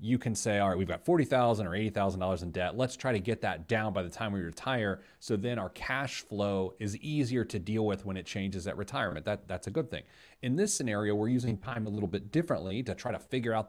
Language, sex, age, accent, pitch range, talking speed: English, male, 30-49, American, 90-115 Hz, 255 wpm